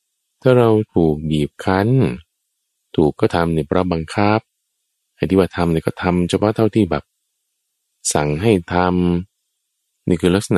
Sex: male